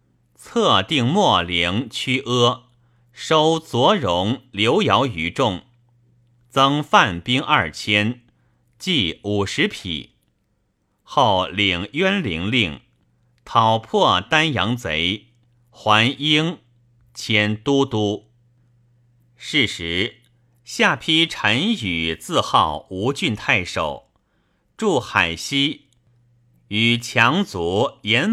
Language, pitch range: Chinese, 105-125 Hz